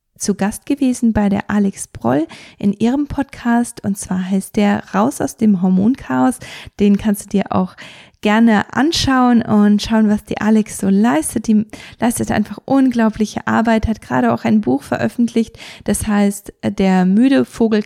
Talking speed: 160 wpm